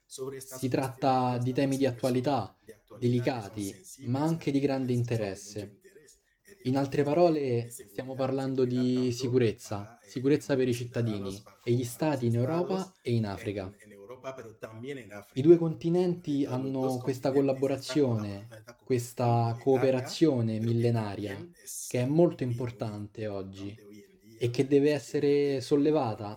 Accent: native